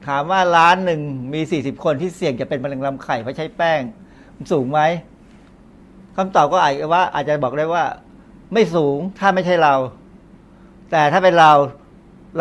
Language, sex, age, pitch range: Thai, male, 60-79, 140-175 Hz